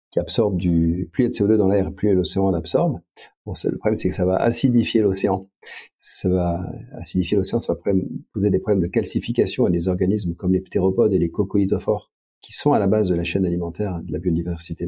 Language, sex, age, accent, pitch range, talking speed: French, male, 50-69, French, 90-115 Hz, 205 wpm